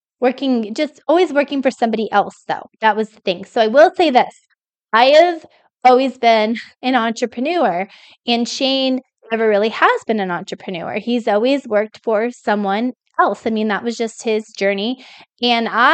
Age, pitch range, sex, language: 20-39, 210-255 Hz, female, English